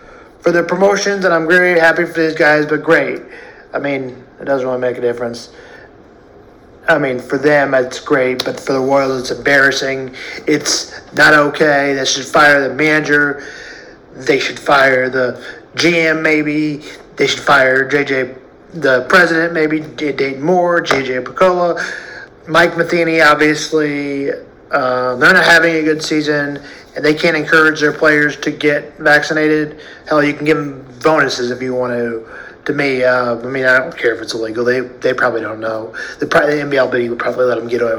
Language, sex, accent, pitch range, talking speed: English, male, American, 130-165 Hz, 175 wpm